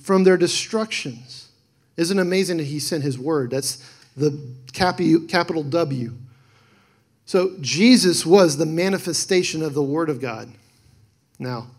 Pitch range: 130-170 Hz